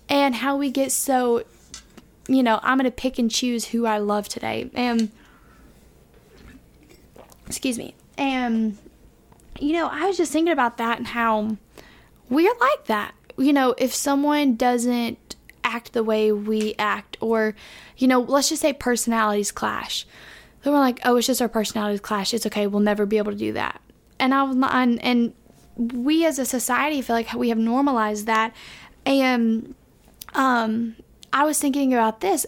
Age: 10-29